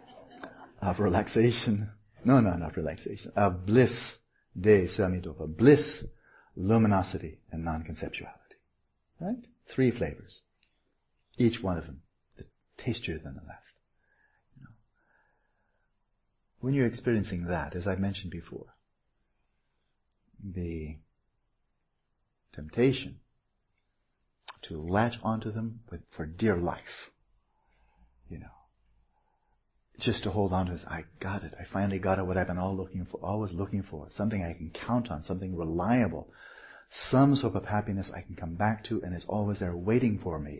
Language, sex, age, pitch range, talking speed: English, male, 60-79, 85-110 Hz, 135 wpm